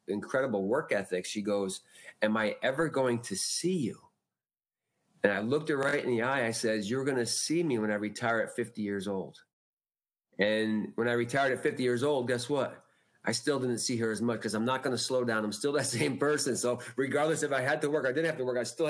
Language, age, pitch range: English, 40-59, 115-145 Hz